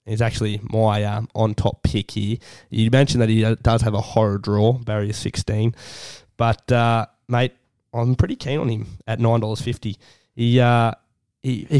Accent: Australian